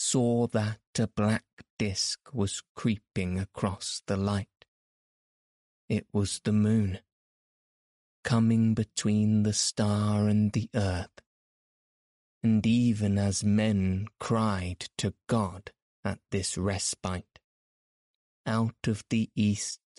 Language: English